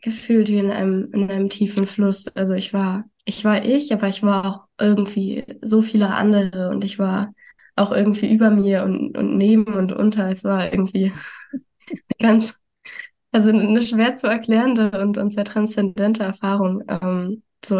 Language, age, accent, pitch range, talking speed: German, 20-39, German, 195-215 Hz, 170 wpm